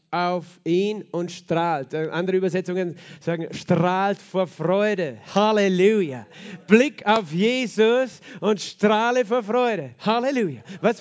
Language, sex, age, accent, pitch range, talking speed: German, male, 40-59, German, 170-215 Hz, 110 wpm